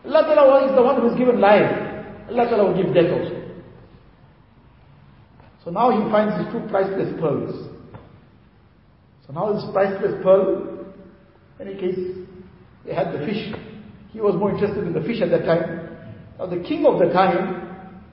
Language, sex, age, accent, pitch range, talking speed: English, male, 50-69, Indian, 185-230 Hz, 165 wpm